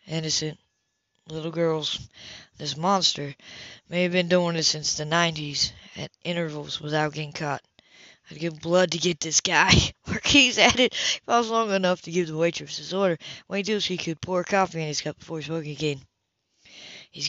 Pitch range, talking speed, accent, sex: 145-170 Hz, 190 wpm, American, female